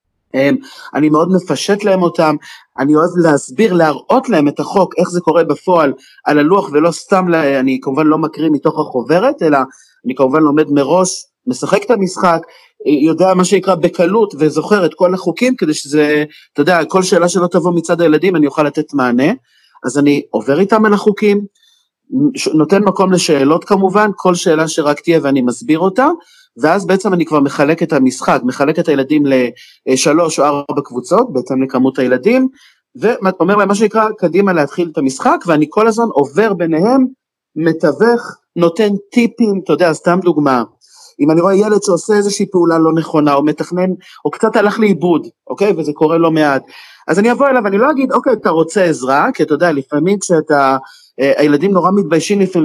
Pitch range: 150-200 Hz